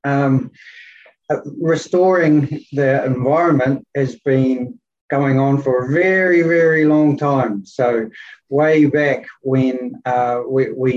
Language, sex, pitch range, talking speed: English, male, 120-145 Hz, 120 wpm